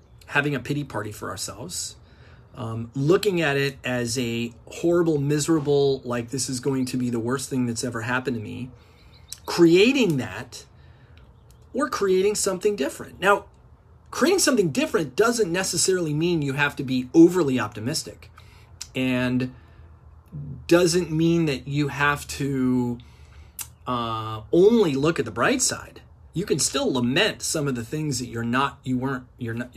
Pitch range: 115-165 Hz